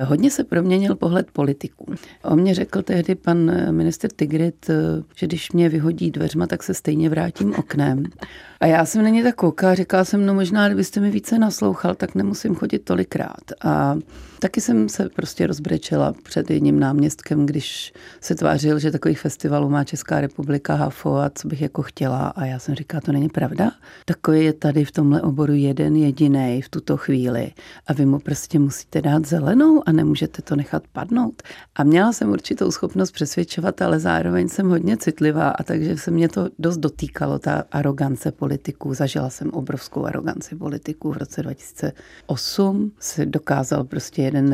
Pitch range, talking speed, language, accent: 145-175 Hz, 170 wpm, Czech, native